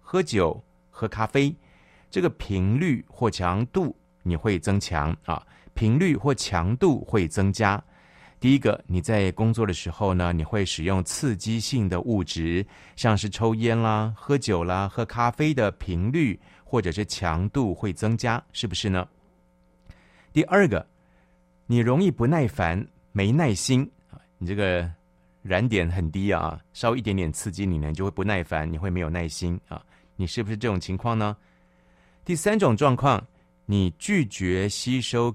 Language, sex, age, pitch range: Chinese, male, 30-49, 90-125 Hz